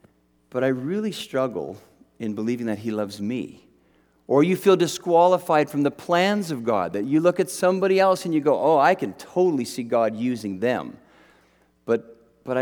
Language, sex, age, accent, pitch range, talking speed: English, male, 50-69, American, 125-180 Hz, 180 wpm